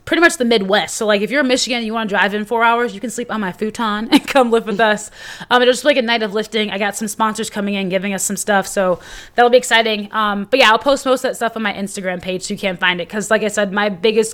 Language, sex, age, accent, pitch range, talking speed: English, female, 20-39, American, 190-230 Hz, 320 wpm